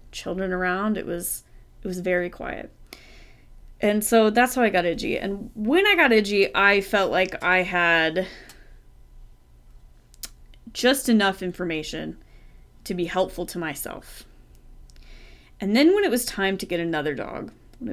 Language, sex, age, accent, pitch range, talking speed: English, female, 20-39, American, 170-210 Hz, 145 wpm